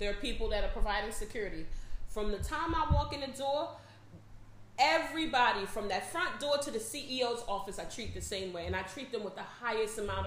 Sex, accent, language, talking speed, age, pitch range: female, American, English, 215 wpm, 30-49, 200-250 Hz